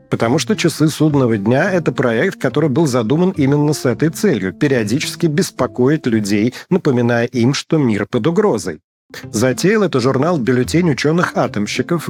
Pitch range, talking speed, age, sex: 115-155 Hz, 150 wpm, 40-59, male